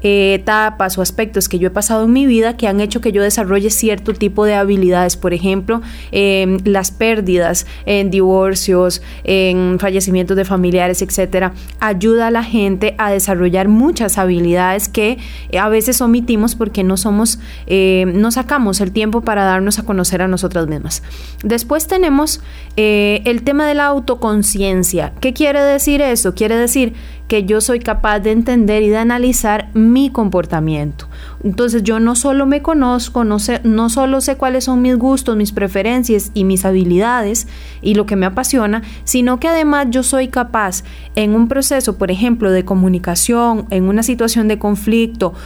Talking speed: 170 wpm